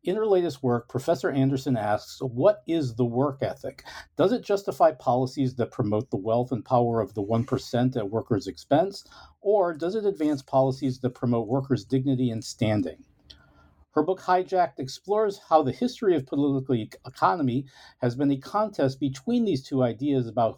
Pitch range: 120-150 Hz